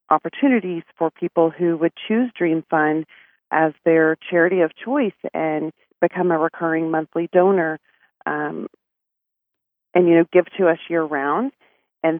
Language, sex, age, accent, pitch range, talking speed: English, female, 40-59, American, 160-180 Hz, 140 wpm